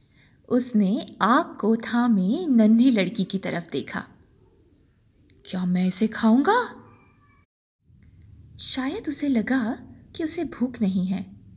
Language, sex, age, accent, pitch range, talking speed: Hindi, female, 20-39, native, 205-295 Hz, 100 wpm